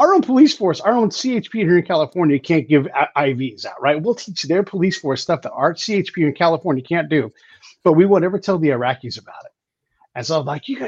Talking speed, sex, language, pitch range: 230 wpm, male, English, 140-180 Hz